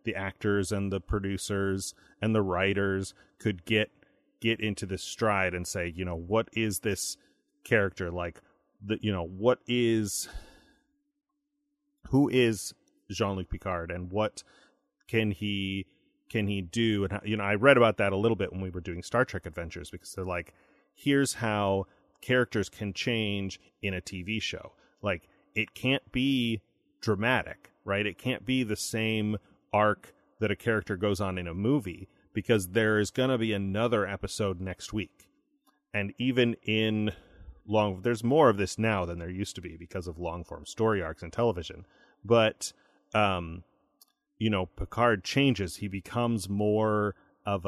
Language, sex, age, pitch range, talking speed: English, male, 30-49, 95-115 Hz, 165 wpm